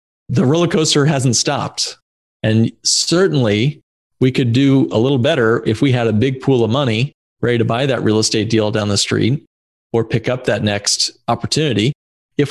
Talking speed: 180 wpm